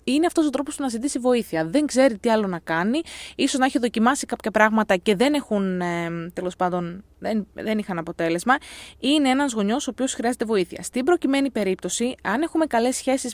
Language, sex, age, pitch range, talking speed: Greek, female, 20-39, 195-280 Hz, 190 wpm